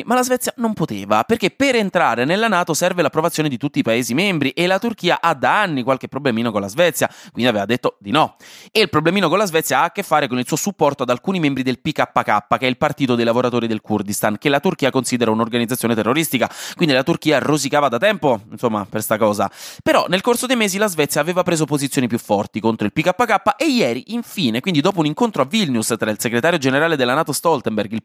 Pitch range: 120-185 Hz